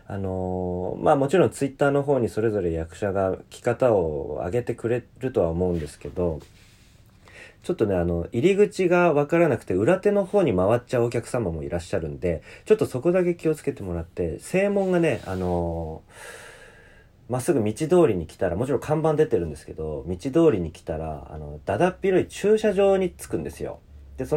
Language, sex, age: Japanese, male, 40-59